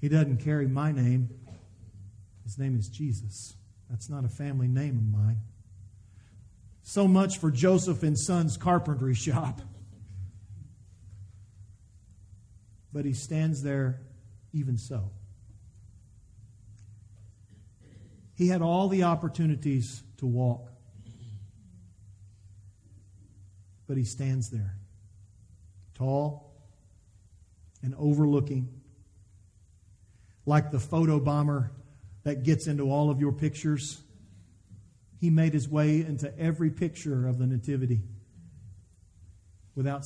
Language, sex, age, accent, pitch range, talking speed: English, male, 40-59, American, 100-145 Hz, 95 wpm